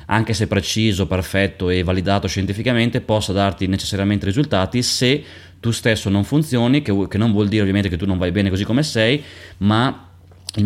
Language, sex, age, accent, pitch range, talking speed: Italian, male, 20-39, native, 95-110 Hz, 180 wpm